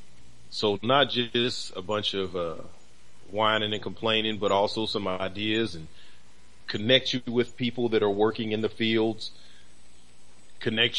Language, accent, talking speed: English, American, 140 wpm